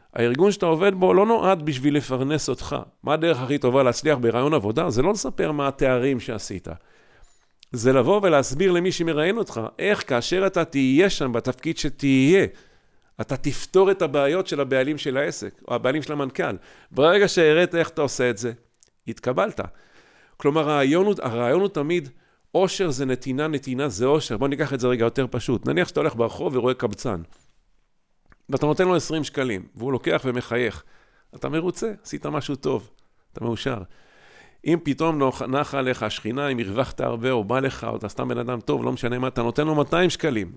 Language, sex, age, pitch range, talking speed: Hebrew, male, 50-69, 125-155 Hz, 175 wpm